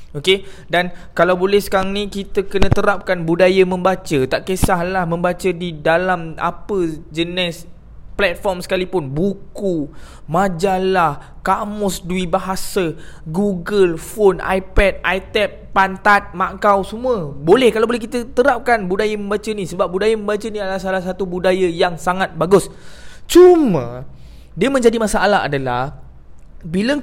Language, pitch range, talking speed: Malay, 160-205 Hz, 125 wpm